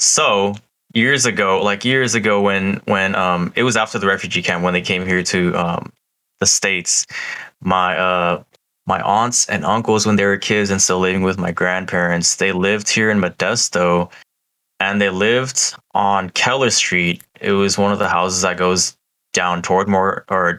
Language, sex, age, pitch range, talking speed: English, male, 20-39, 90-100 Hz, 180 wpm